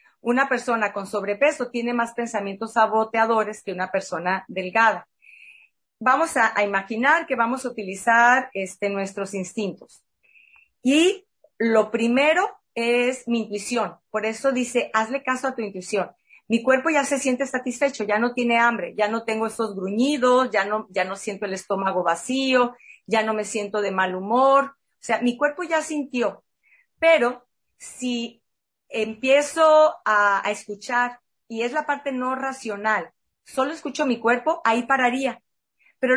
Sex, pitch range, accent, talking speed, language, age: female, 220-265 Hz, Mexican, 150 wpm, Spanish, 40-59